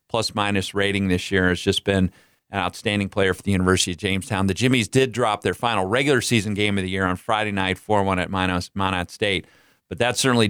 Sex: male